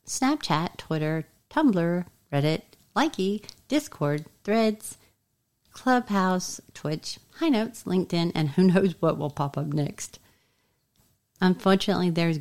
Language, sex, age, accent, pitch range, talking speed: English, female, 40-59, American, 145-180 Hz, 105 wpm